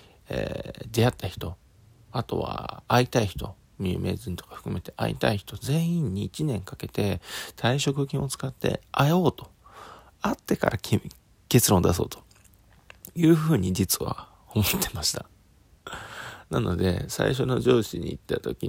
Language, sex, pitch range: Japanese, male, 90-140 Hz